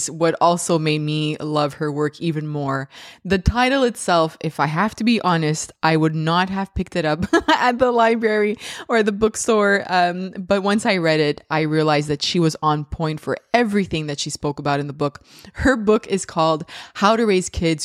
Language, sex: English, female